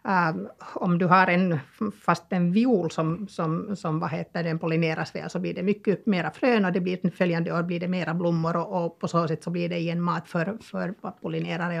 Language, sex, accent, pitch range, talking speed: Swedish, female, Finnish, 170-200 Hz, 225 wpm